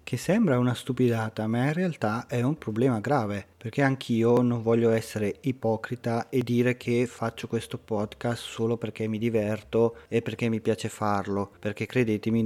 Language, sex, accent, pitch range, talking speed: Italian, male, native, 110-130 Hz, 165 wpm